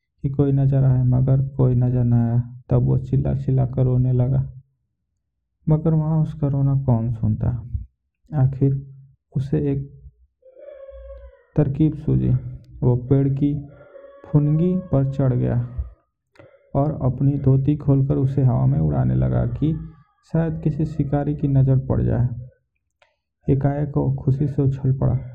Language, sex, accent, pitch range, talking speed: Hindi, male, native, 130-145 Hz, 135 wpm